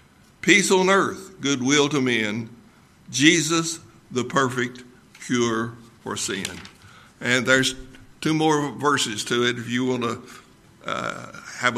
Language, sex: English, male